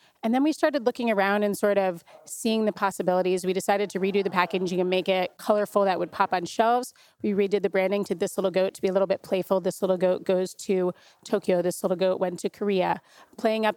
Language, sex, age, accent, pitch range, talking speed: English, female, 30-49, American, 185-215 Hz, 240 wpm